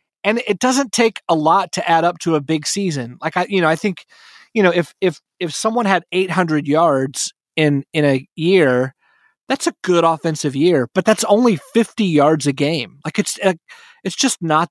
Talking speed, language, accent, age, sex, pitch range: 210 wpm, English, American, 30-49, male, 145-185 Hz